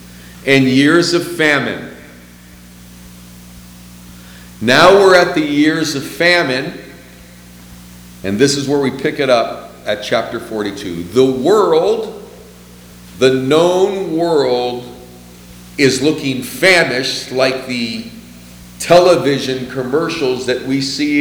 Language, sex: English, male